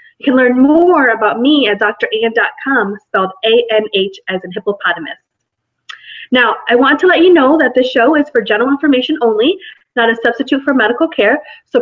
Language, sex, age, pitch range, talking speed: English, female, 20-39, 215-285 Hz, 180 wpm